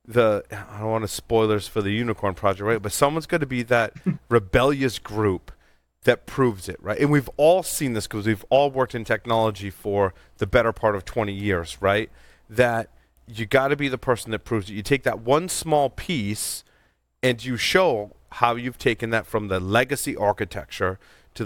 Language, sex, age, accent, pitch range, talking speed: English, male, 30-49, American, 105-135 Hz, 195 wpm